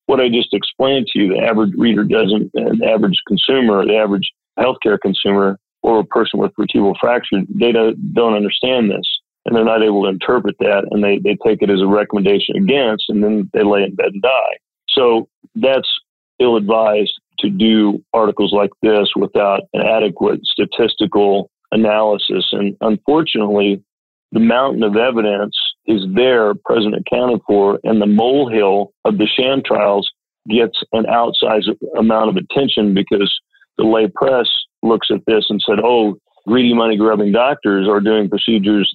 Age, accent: 40-59, American